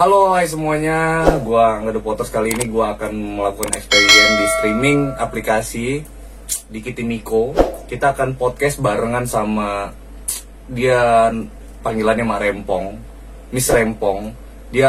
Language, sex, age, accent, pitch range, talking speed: Indonesian, male, 20-39, native, 110-140 Hz, 120 wpm